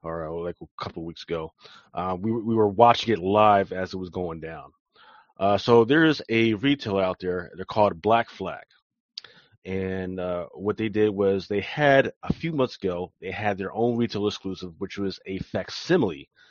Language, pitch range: English, 95-115 Hz